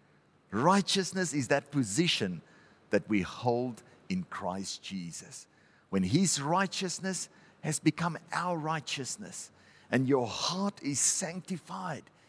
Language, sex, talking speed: English, male, 105 wpm